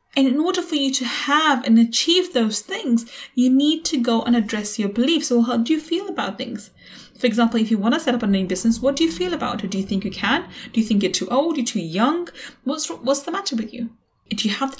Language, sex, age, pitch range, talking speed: English, female, 10-29, 230-295 Hz, 270 wpm